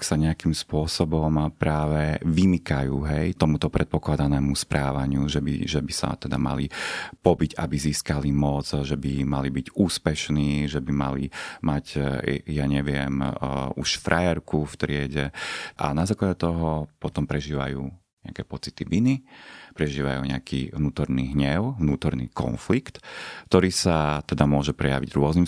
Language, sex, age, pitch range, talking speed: Slovak, male, 30-49, 70-85 Hz, 130 wpm